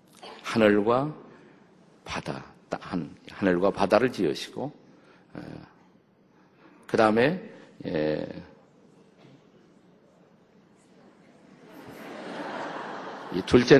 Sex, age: male, 50-69